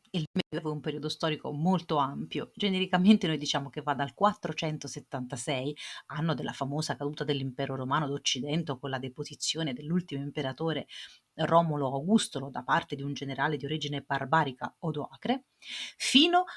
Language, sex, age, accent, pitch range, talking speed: Italian, female, 30-49, native, 140-190 Hz, 140 wpm